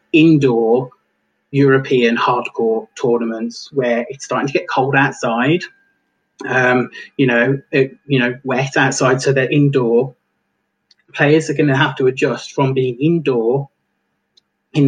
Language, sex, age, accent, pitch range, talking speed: English, male, 30-49, British, 125-140 Hz, 135 wpm